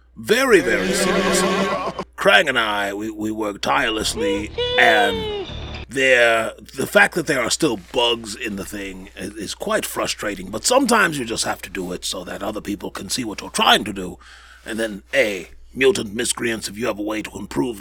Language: English